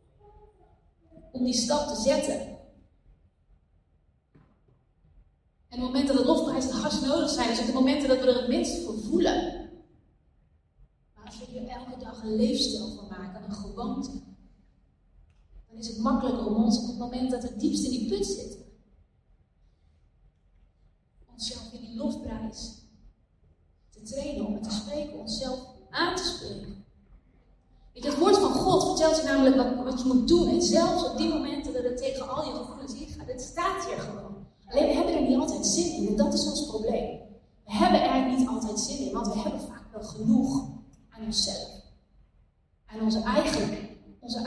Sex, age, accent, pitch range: female, 30-49, Dutch, 210-280 Hz